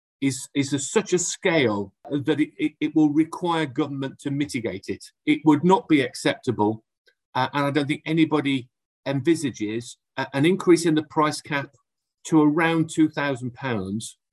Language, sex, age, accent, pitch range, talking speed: English, male, 40-59, British, 125-160 Hz, 155 wpm